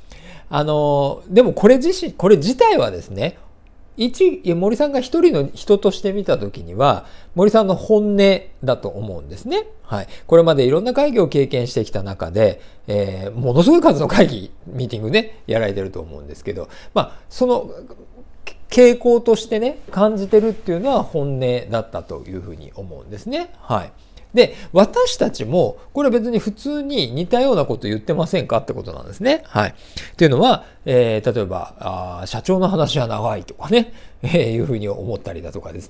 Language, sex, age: Japanese, male, 50-69